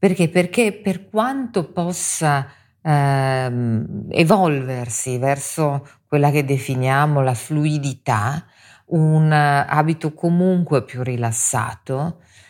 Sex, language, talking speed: female, Italian, 90 wpm